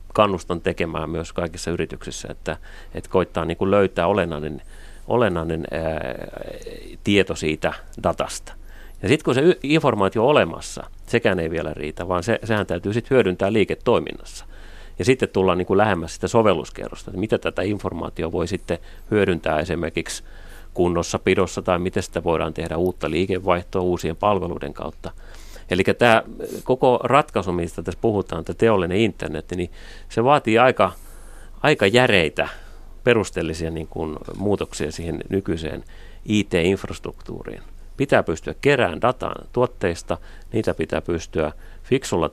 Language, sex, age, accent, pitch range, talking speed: Finnish, male, 30-49, native, 80-95 Hz, 125 wpm